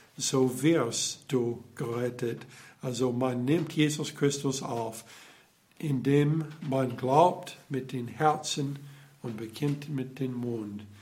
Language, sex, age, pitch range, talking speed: German, male, 60-79, 120-150 Hz, 115 wpm